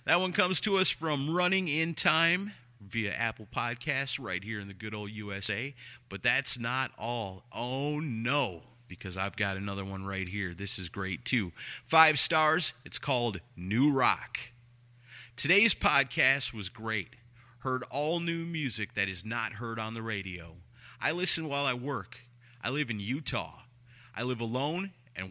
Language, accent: English, American